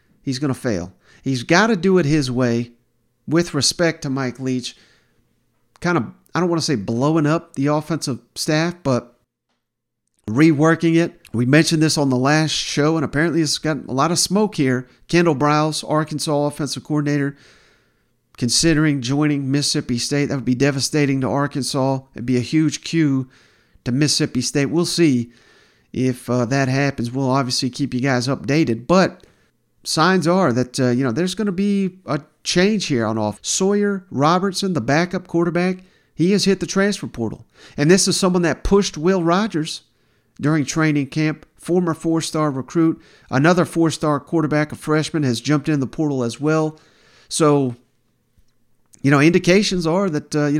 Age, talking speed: 40-59, 170 wpm